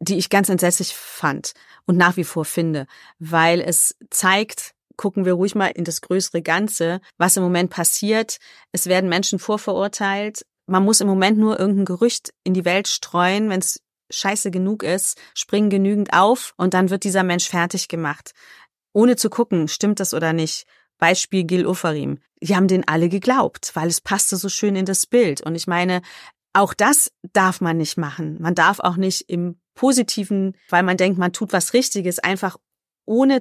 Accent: German